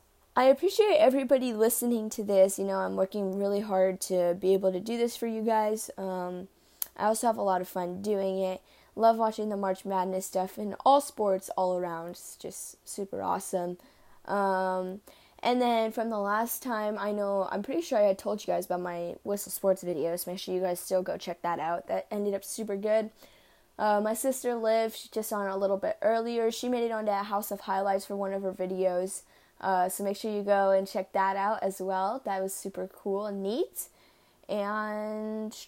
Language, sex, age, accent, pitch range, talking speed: English, female, 10-29, American, 190-230 Hz, 210 wpm